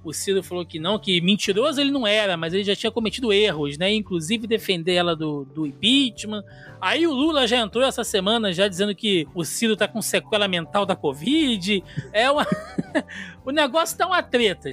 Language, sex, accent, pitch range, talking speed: Portuguese, male, Brazilian, 155-210 Hz, 195 wpm